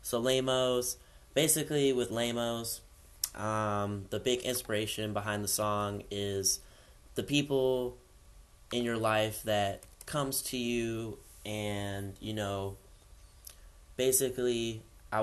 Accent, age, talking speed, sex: American, 10-29, 100 wpm, male